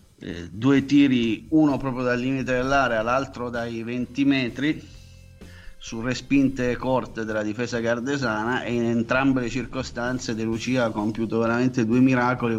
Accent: native